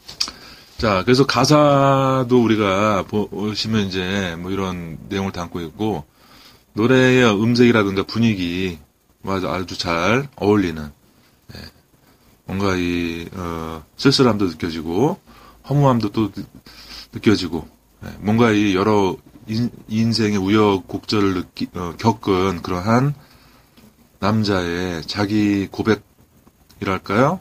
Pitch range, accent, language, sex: 90-115 Hz, native, Korean, male